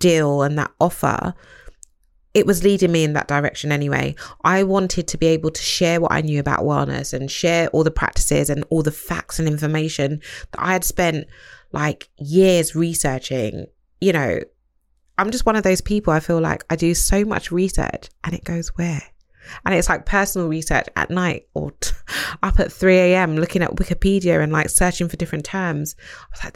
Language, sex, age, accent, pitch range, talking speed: English, female, 20-39, British, 150-175 Hz, 190 wpm